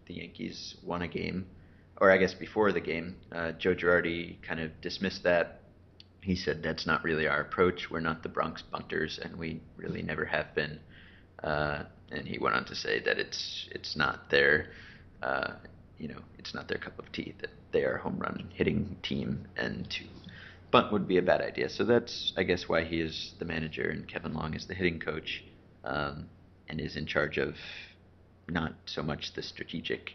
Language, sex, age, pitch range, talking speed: English, male, 30-49, 80-95 Hz, 200 wpm